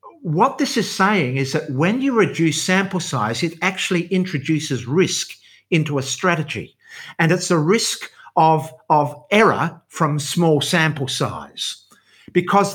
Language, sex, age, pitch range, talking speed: English, male, 50-69, 130-175 Hz, 140 wpm